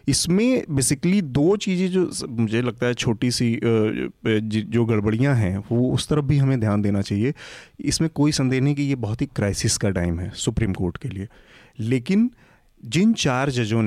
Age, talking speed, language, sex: 30-49, 175 wpm, Hindi, male